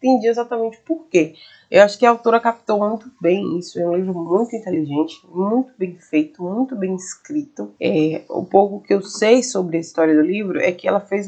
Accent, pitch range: Brazilian, 165-215 Hz